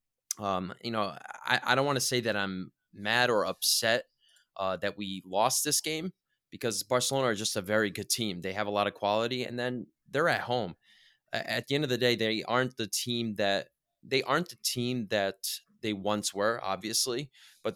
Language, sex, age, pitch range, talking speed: English, male, 20-39, 95-120 Hz, 205 wpm